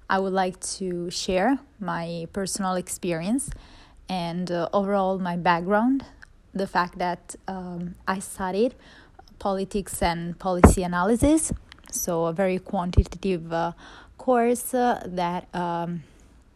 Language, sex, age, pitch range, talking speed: English, female, 20-39, 175-200 Hz, 115 wpm